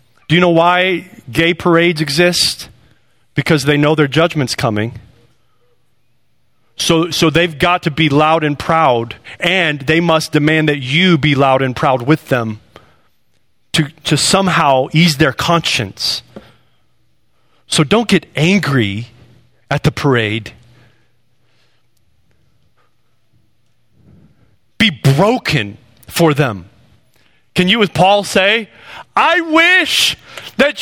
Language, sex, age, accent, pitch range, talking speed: English, male, 30-49, American, 120-160 Hz, 115 wpm